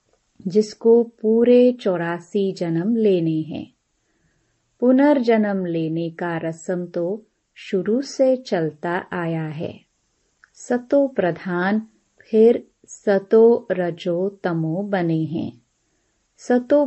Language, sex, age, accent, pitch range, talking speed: Hindi, female, 30-49, native, 175-230 Hz, 90 wpm